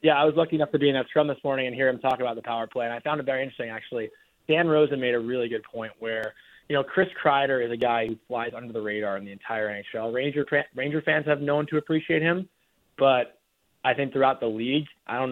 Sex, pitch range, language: male, 115-140 Hz, English